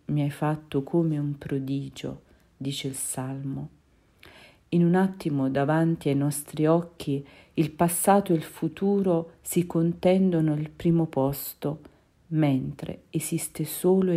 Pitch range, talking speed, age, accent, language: 140-170 Hz, 125 wpm, 50-69, native, Italian